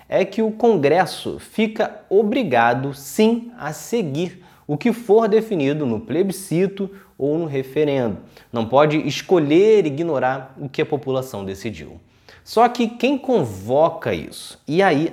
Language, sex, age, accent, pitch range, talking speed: Portuguese, male, 20-39, Brazilian, 130-195 Hz, 135 wpm